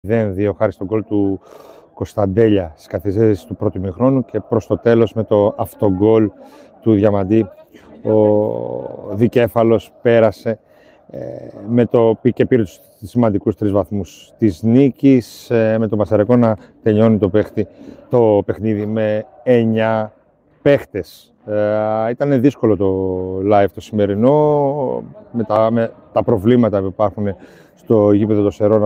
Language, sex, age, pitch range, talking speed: Greek, male, 30-49, 100-120 Hz, 130 wpm